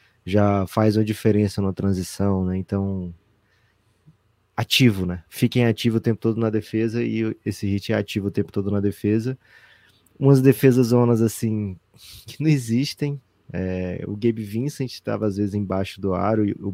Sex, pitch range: male, 95-115 Hz